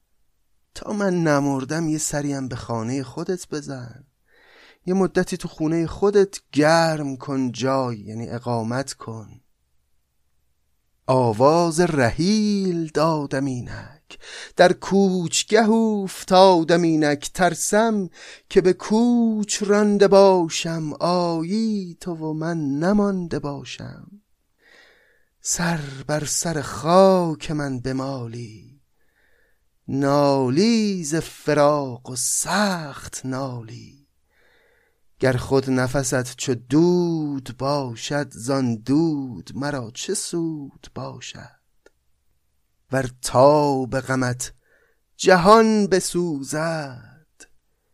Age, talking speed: 30-49, 85 wpm